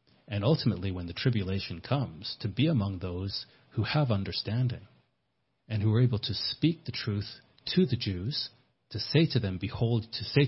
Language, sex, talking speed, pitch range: English, male, 180 wpm, 100-130 Hz